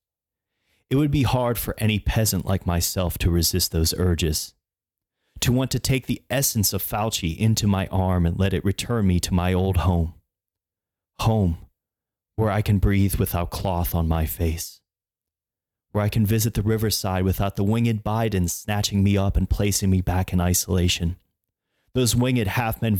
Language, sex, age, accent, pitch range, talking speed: English, male, 30-49, American, 90-105 Hz, 170 wpm